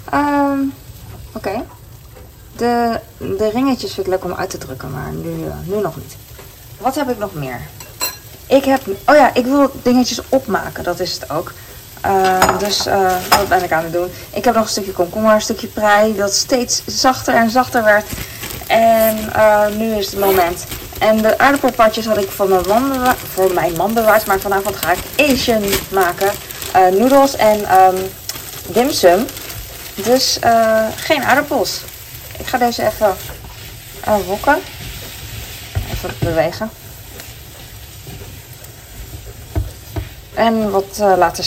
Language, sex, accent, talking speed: Dutch, female, Dutch, 150 wpm